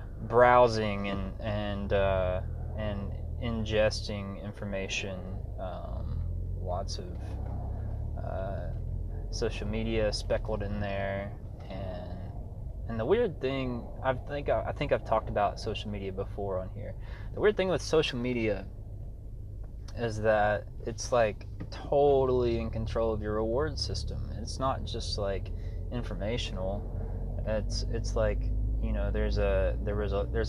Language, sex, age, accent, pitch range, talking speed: English, male, 20-39, American, 100-115 Hz, 125 wpm